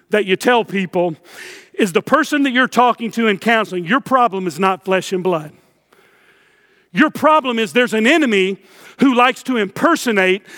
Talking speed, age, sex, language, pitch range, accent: 170 wpm, 50-69, male, English, 210-270 Hz, American